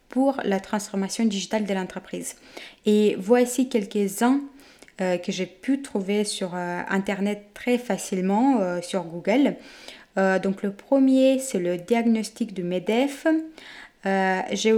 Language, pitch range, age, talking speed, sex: French, 195-245 Hz, 20-39, 135 wpm, female